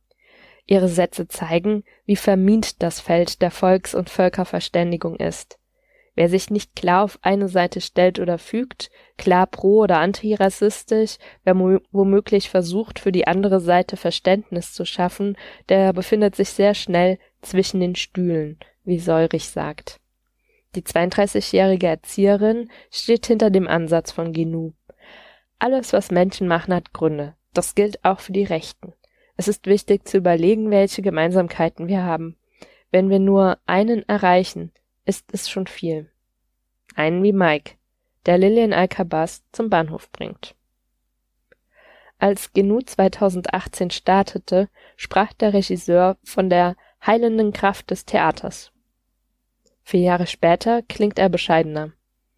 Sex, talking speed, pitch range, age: female, 130 wpm, 175-205 Hz, 20-39